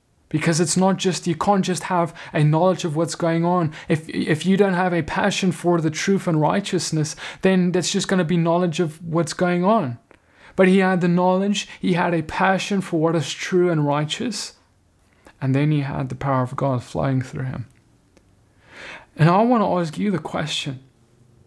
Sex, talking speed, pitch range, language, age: male, 200 wpm, 145-185 Hz, English, 20-39